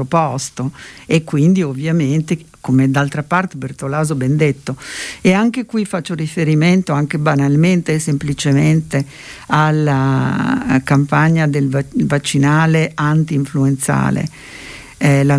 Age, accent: 50-69, native